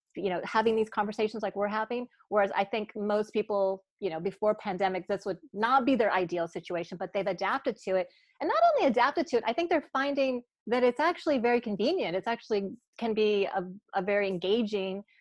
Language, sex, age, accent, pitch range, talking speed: English, female, 30-49, American, 190-225 Hz, 205 wpm